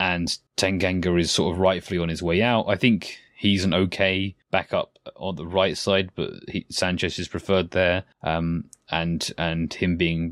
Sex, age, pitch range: male, 20-39, 80-95 Hz